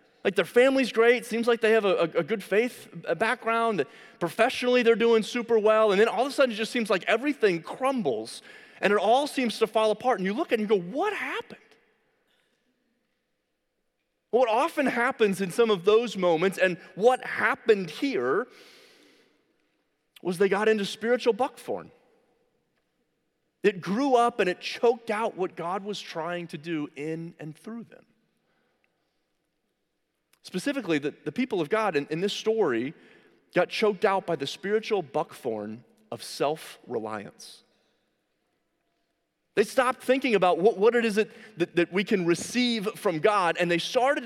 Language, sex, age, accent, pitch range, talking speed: English, male, 30-49, American, 170-240 Hz, 160 wpm